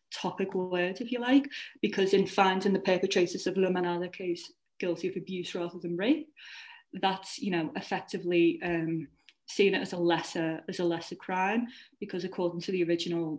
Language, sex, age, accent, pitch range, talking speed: English, female, 20-39, British, 175-200 Hz, 170 wpm